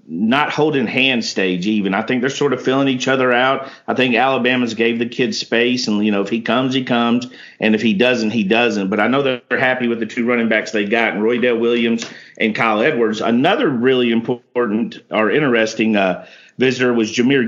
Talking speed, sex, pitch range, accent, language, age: 215 wpm, male, 110-125 Hz, American, English, 50-69